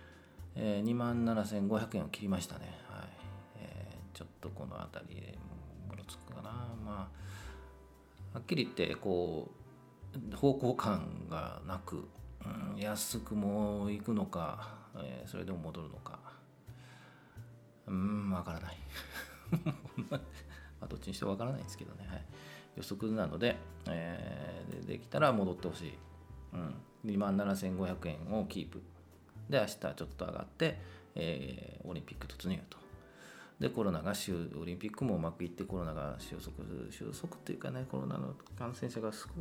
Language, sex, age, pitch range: Japanese, male, 40-59, 80-105 Hz